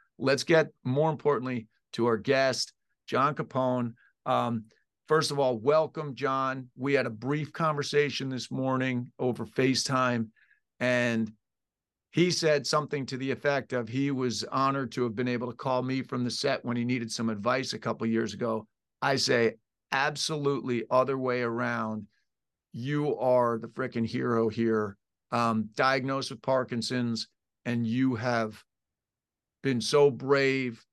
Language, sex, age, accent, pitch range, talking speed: English, male, 50-69, American, 115-135 Hz, 150 wpm